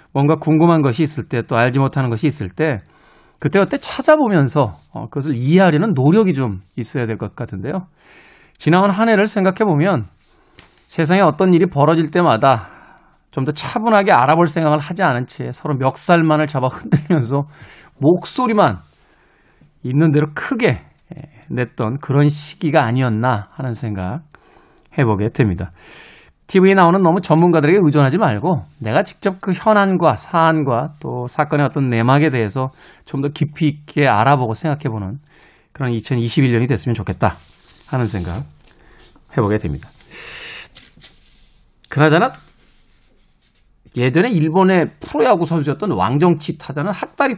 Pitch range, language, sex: 125-170 Hz, Korean, male